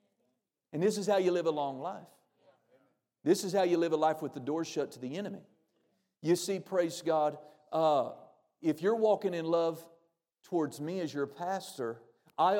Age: 50-69